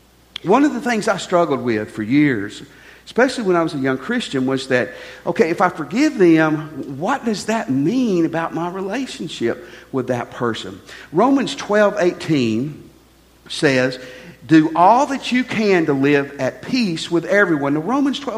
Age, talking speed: 50-69, 160 wpm